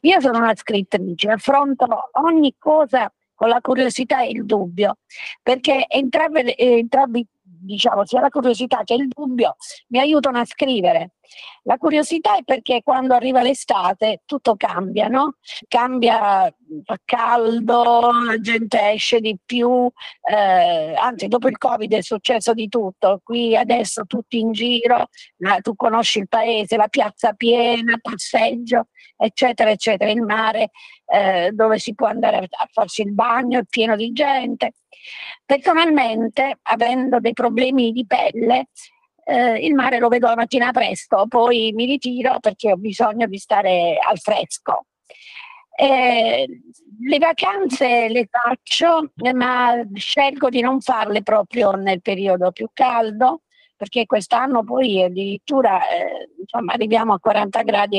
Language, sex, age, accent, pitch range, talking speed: Italian, female, 50-69, native, 220-260 Hz, 135 wpm